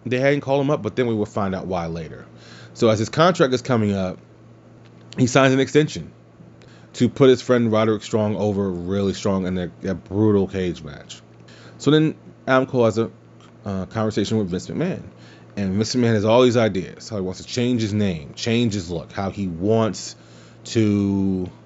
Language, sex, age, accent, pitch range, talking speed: English, male, 30-49, American, 95-115 Hz, 195 wpm